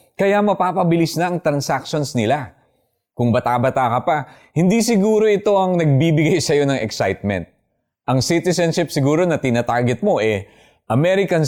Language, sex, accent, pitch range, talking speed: Filipino, male, native, 120-175 Hz, 135 wpm